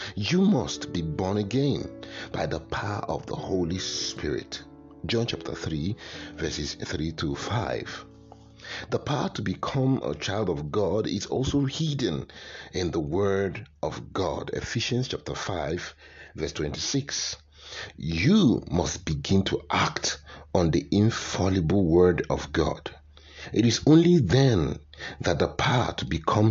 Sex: male